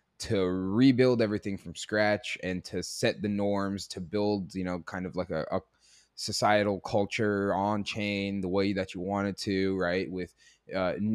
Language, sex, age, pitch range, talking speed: English, male, 20-39, 95-110 Hz, 170 wpm